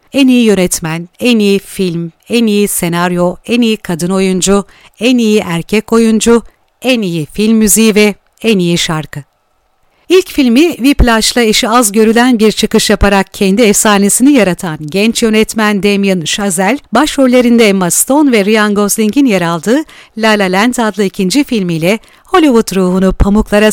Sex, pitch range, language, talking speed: female, 190-240 Hz, Turkish, 145 wpm